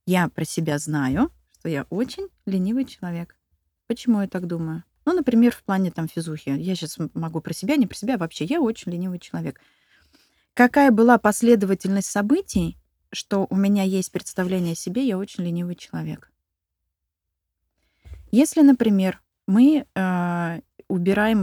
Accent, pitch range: native, 165-210 Hz